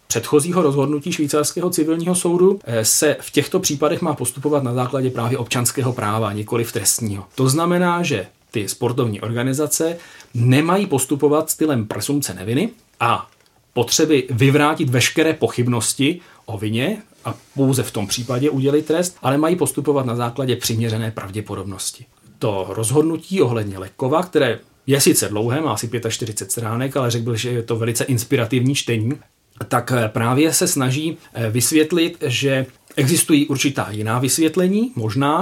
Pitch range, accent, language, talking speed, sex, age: 115-145 Hz, native, Czech, 135 wpm, male, 40-59